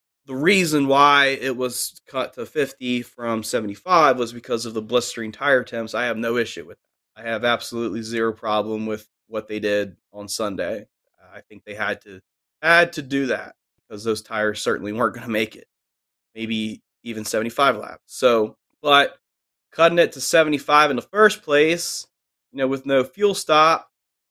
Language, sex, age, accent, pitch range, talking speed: English, male, 20-39, American, 115-135 Hz, 180 wpm